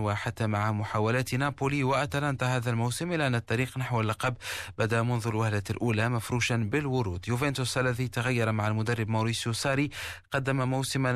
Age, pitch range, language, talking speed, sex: 30-49, 110-135 Hz, Arabic, 145 wpm, male